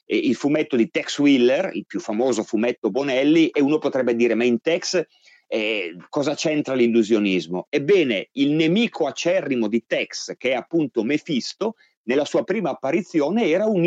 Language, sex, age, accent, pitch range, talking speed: Italian, male, 30-49, native, 115-165 Hz, 160 wpm